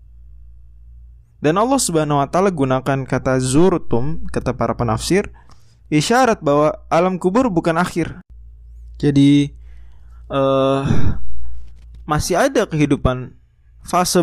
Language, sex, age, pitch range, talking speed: Indonesian, male, 20-39, 105-145 Hz, 95 wpm